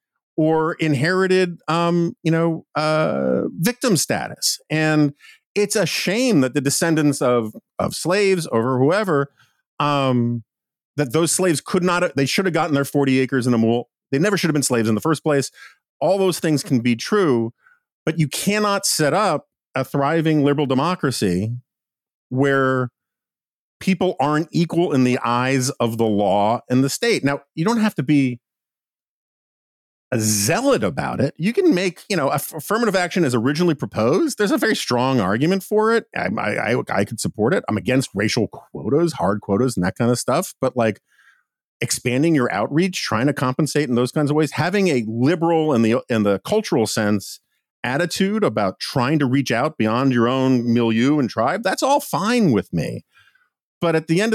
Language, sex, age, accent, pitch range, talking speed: English, male, 40-59, American, 125-175 Hz, 180 wpm